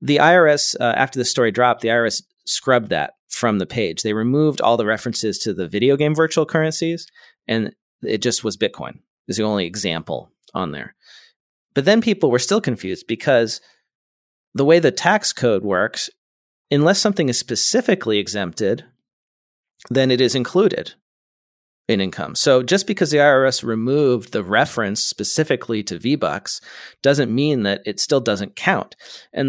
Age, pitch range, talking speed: 40-59, 110-145 Hz, 160 wpm